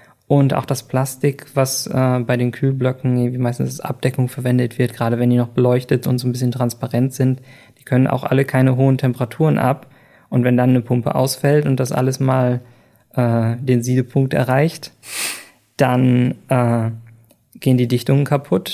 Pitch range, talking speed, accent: 125-145 Hz, 175 wpm, German